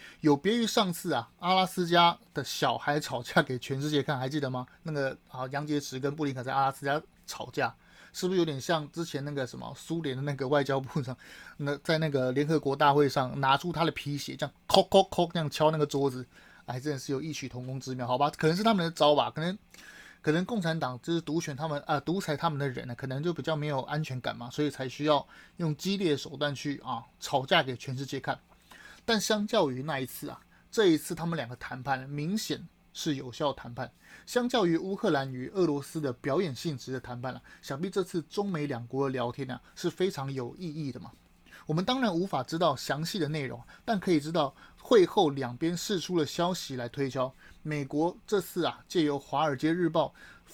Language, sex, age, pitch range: Chinese, male, 30-49, 135-170 Hz